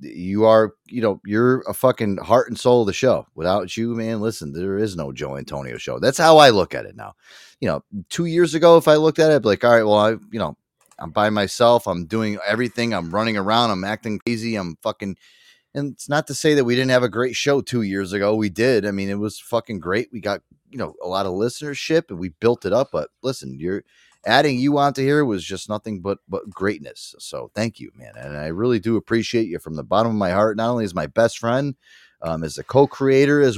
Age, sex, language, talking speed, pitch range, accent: 30-49, male, English, 245 wpm, 100-135 Hz, American